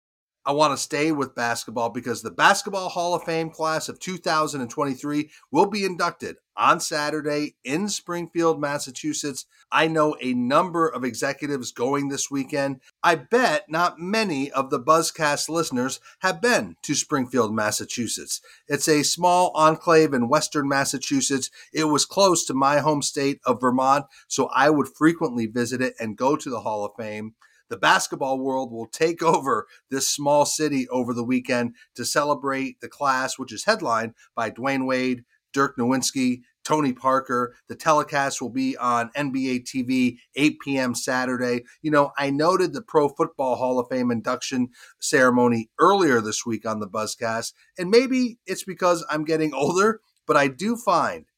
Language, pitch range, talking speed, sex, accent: English, 125-160 Hz, 160 wpm, male, American